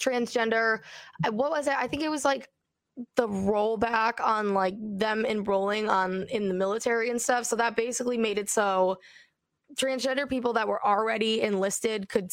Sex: female